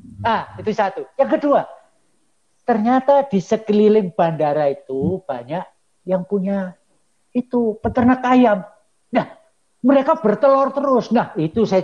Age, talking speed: 50-69, 115 wpm